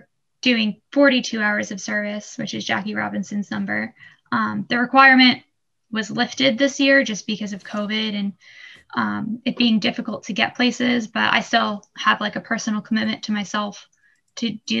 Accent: American